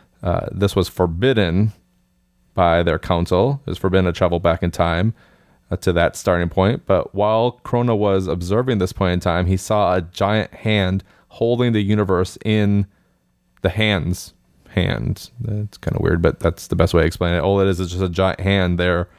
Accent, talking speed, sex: American, 195 wpm, male